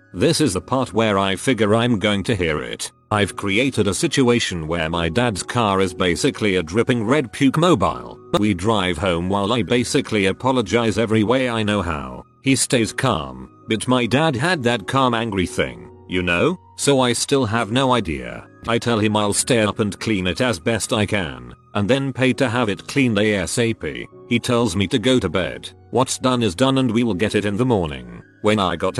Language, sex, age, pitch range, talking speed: English, male, 40-59, 95-125 Hz, 210 wpm